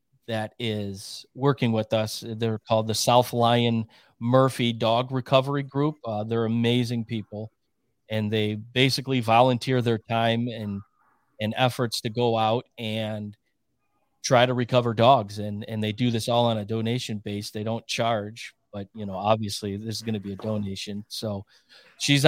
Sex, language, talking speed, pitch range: male, English, 160 wpm, 110-125 Hz